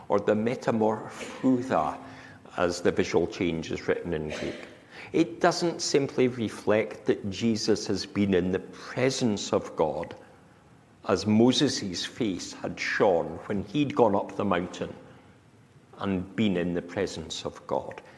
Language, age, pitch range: English, 60-79, 110-155 Hz